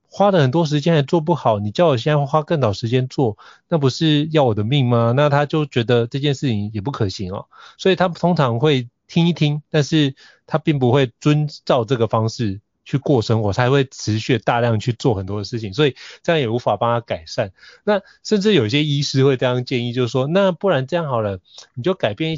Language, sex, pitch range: Chinese, male, 115-160 Hz